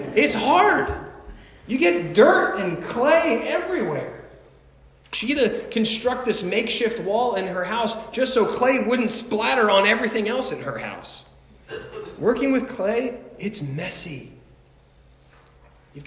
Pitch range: 140-215 Hz